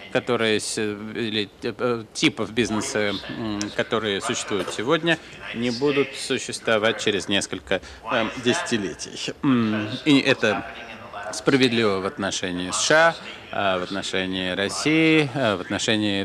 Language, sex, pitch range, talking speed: Russian, male, 105-145 Hz, 90 wpm